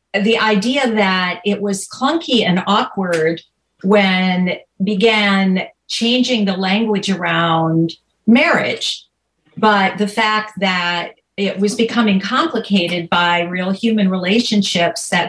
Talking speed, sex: 110 wpm, female